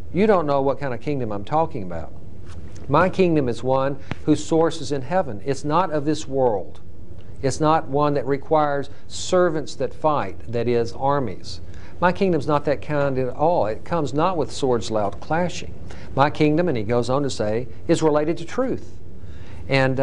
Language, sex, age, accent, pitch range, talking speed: English, male, 50-69, American, 105-155 Hz, 185 wpm